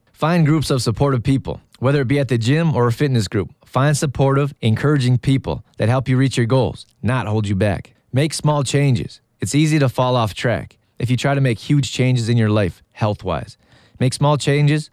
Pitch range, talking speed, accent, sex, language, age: 115-140 Hz, 210 wpm, American, male, English, 30-49